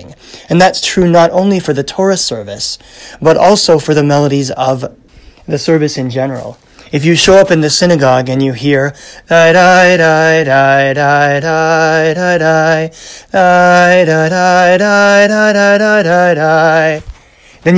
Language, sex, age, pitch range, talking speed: English, male, 30-49, 135-175 Hz, 120 wpm